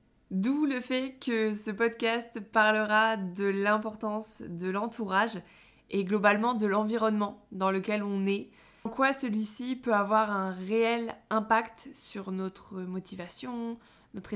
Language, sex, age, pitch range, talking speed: French, female, 20-39, 195-230 Hz, 130 wpm